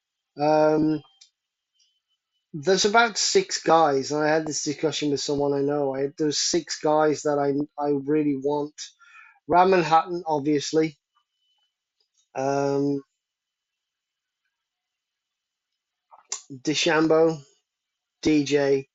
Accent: British